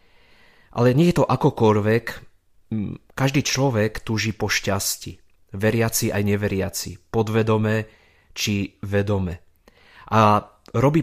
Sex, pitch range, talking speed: male, 100-115 Hz, 105 wpm